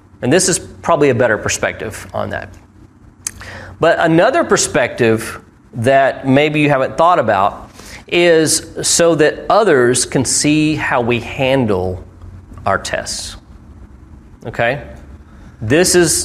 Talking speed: 120 wpm